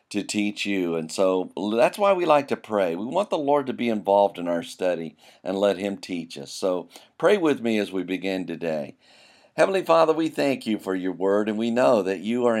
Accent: American